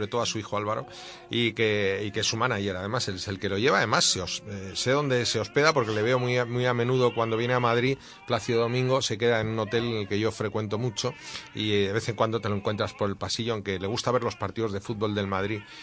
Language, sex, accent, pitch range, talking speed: Spanish, male, Spanish, 105-125 Hz, 280 wpm